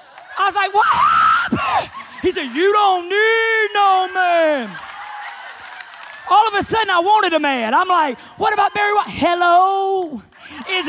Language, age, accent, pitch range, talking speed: English, 30-49, American, 295-385 Hz, 155 wpm